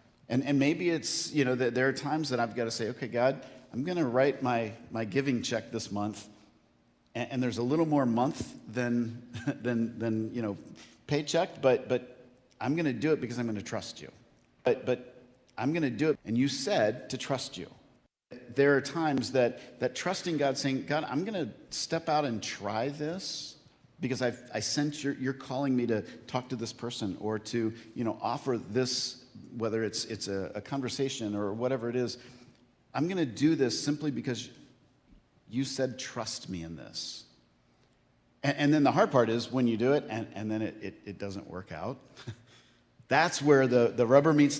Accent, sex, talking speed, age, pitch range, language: American, male, 195 wpm, 50-69, 115-140 Hz, English